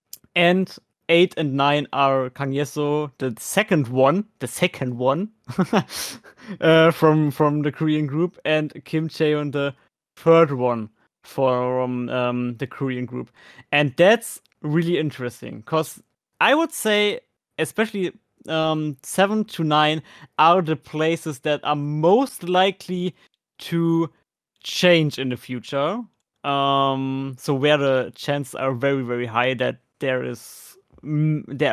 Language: English